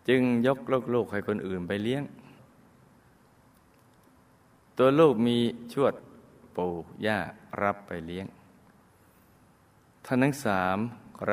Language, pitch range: Thai, 95-115 Hz